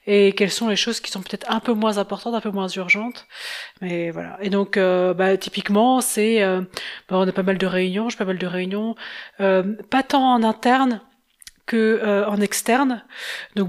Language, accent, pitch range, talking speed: French, French, 190-225 Hz, 205 wpm